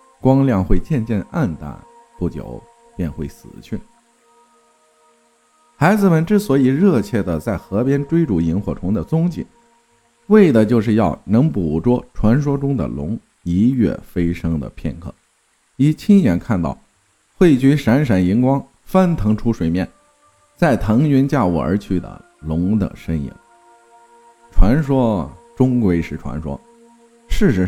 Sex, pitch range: male, 85-140 Hz